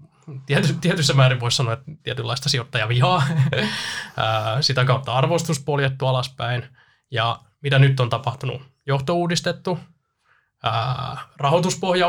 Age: 20-39